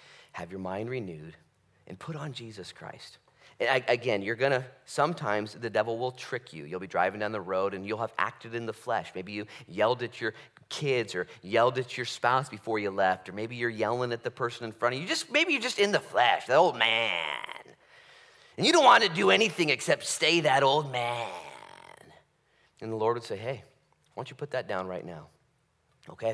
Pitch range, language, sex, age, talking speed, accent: 110-160 Hz, English, male, 30-49, 215 wpm, American